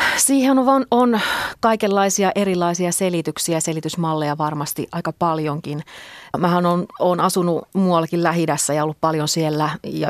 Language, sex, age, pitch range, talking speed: Finnish, female, 30-49, 155-175 Hz, 125 wpm